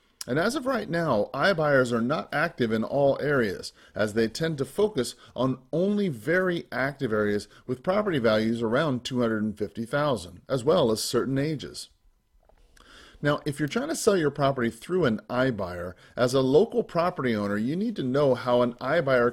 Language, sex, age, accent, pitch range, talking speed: English, male, 40-59, American, 115-150 Hz, 170 wpm